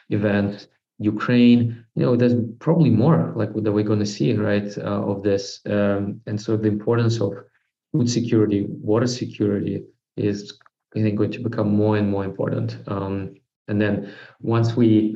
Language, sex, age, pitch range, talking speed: English, male, 20-39, 100-115 Hz, 160 wpm